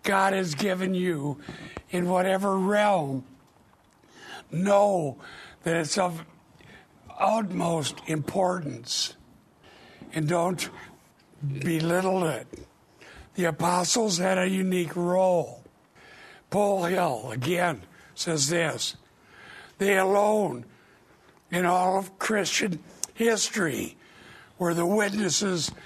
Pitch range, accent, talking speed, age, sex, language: 150-185 Hz, American, 90 wpm, 60-79, male, English